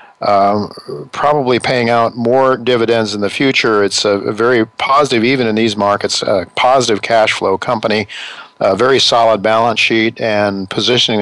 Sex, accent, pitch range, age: male, American, 100-115 Hz, 50-69